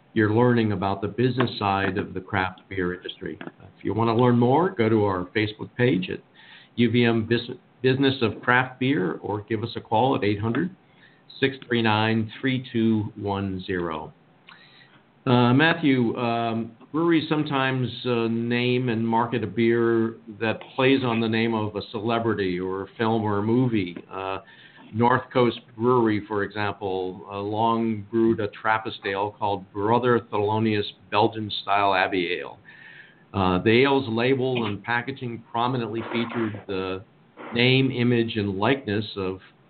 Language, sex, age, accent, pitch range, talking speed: English, male, 50-69, American, 105-125 Hz, 140 wpm